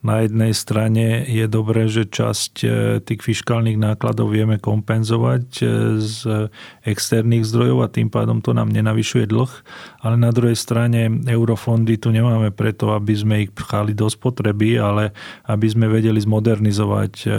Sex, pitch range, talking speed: male, 105-115 Hz, 140 wpm